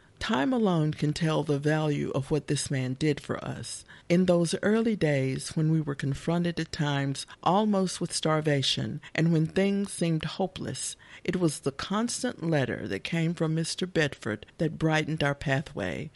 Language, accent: English, American